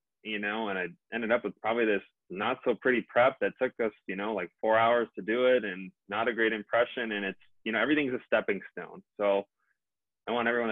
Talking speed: 230 wpm